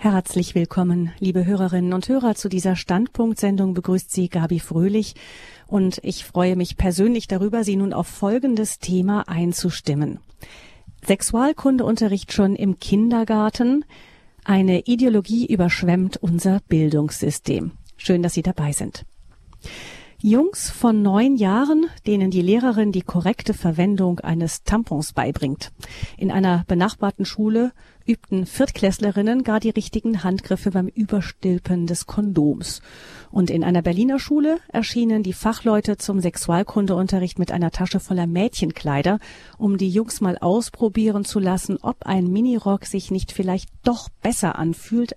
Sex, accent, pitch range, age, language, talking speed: female, German, 175-215 Hz, 40-59, German, 130 wpm